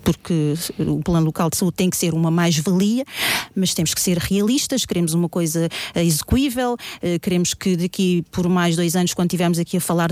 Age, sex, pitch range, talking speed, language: 40-59, female, 180-235 Hz, 190 wpm, Portuguese